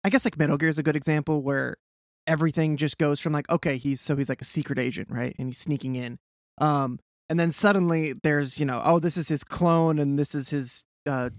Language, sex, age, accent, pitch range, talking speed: English, male, 20-39, American, 130-170 Hz, 235 wpm